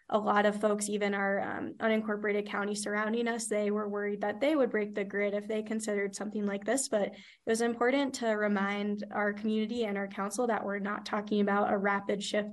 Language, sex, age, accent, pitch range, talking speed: English, female, 10-29, American, 205-230 Hz, 215 wpm